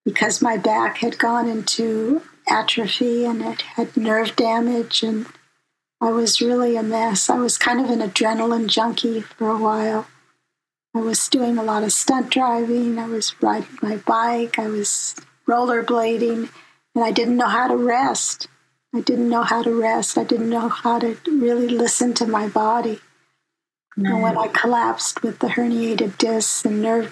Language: English